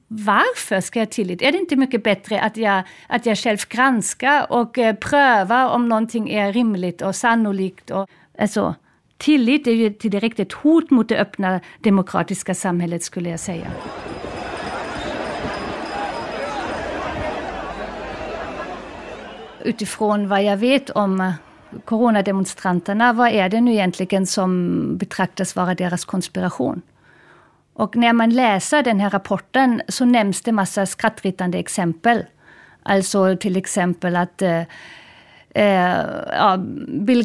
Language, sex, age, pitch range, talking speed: Swedish, female, 50-69, 190-235 Hz, 120 wpm